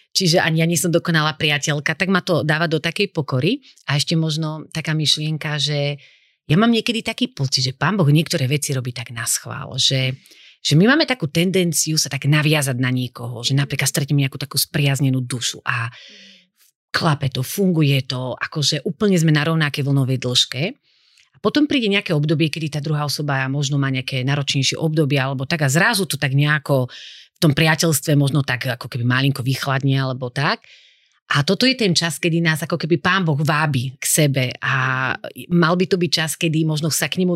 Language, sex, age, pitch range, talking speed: Slovak, female, 30-49, 140-170 Hz, 195 wpm